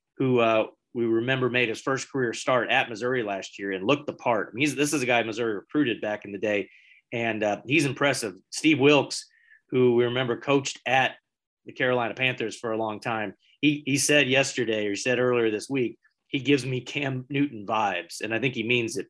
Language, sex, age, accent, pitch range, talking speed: English, male, 30-49, American, 110-135 Hz, 220 wpm